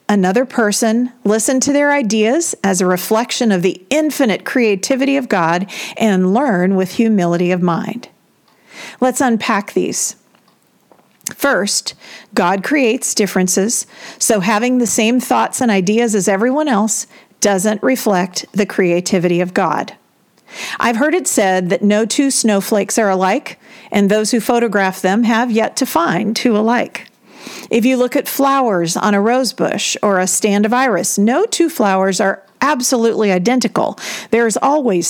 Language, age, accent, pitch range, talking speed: English, 50-69, American, 195-250 Hz, 150 wpm